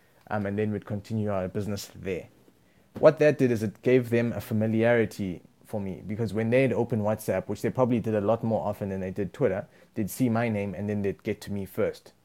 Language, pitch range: English, 100-120 Hz